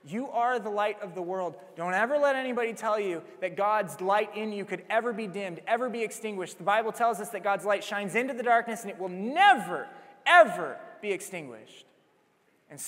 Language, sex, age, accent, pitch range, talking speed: English, male, 20-39, American, 200-230 Hz, 205 wpm